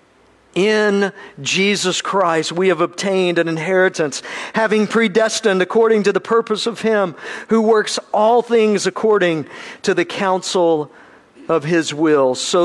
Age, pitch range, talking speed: 50-69, 170-225 Hz, 135 wpm